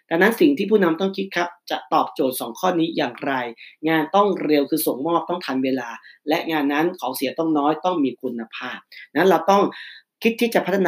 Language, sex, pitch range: Thai, male, 145-180 Hz